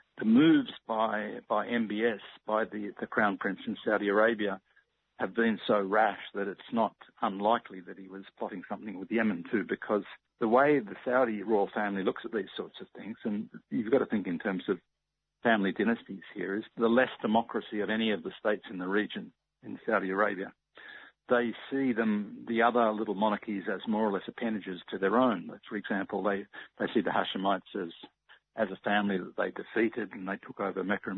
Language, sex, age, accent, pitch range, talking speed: English, male, 50-69, Australian, 100-115 Hz, 200 wpm